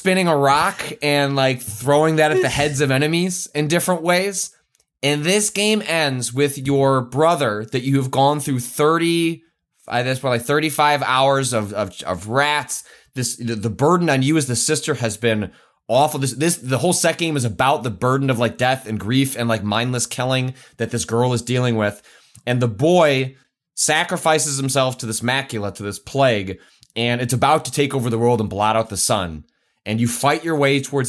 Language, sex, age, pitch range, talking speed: English, male, 20-39, 115-140 Hz, 200 wpm